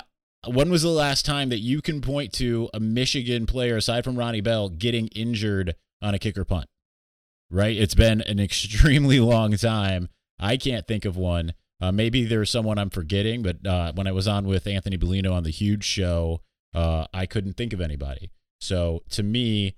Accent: American